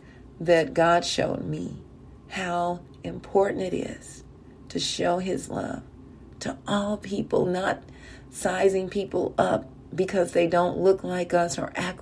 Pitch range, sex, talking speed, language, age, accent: 155-185 Hz, female, 135 wpm, English, 40-59, American